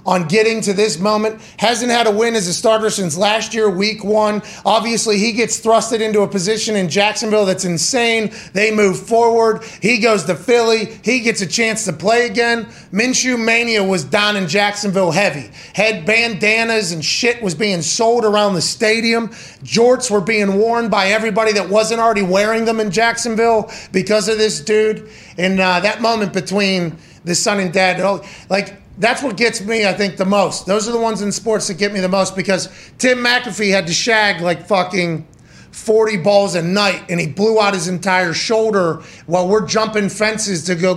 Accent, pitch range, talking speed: American, 185-225 Hz, 190 wpm